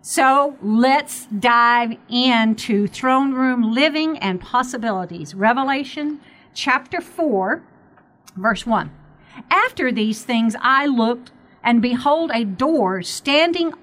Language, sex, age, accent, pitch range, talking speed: English, female, 50-69, American, 210-275 Hz, 105 wpm